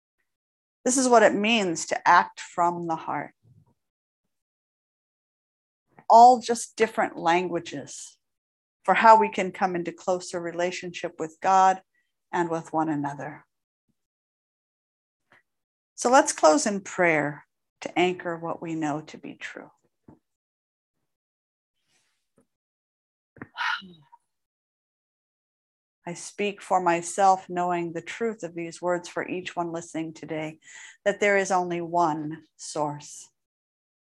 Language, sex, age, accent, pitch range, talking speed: English, female, 50-69, American, 160-190 Hz, 110 wpm